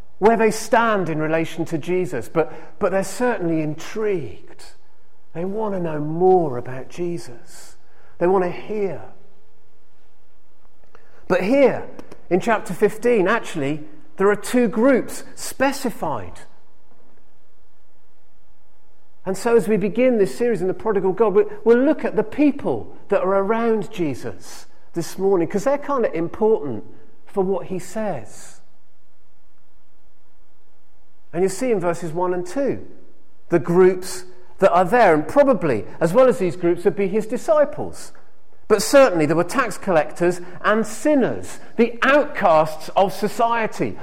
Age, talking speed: 40-59, 140 wpm